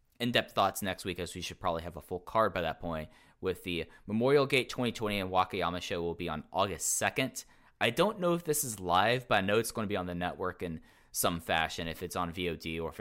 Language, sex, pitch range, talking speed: English, male, 80-95 Hz, 250 wpm